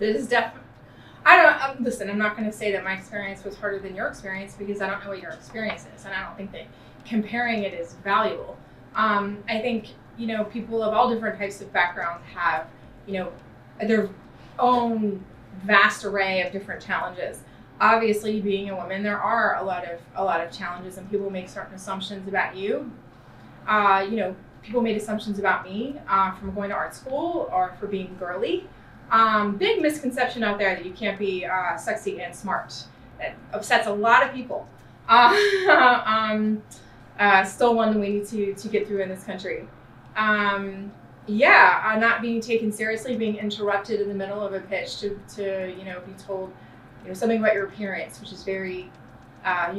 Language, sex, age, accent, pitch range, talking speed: English, female, 20-39, American, 190-220 Hz, 195 wpm